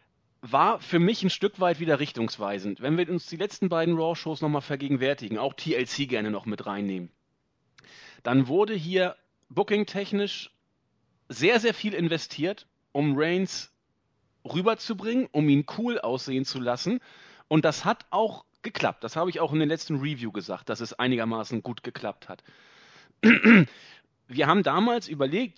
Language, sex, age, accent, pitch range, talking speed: German, male, 40-59, German, 125-190 Hz, 150 wpm